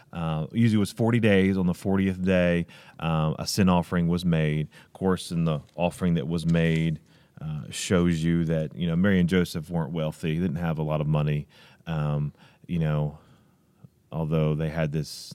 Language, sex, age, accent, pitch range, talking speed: English, male, 30-49, American, 80-95 Hz, 190 wpm